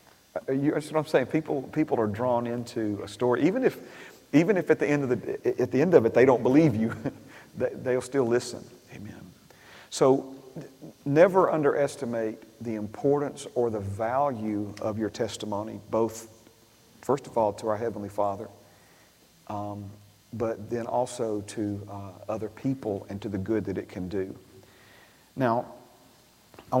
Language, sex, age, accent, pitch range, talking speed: English, male, 40-59, American, 105-125 Hz, 155 wpm